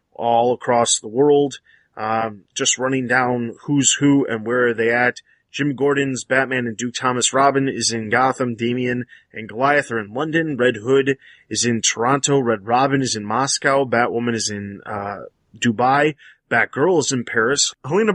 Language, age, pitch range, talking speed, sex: English, 20-39, 115-140 Hz, 170 wpm, male